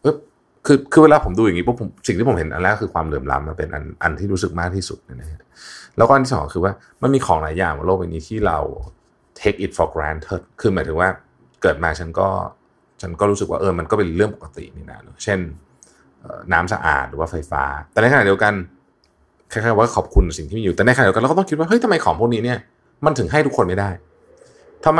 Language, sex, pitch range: Thai, male, 85-115 Hz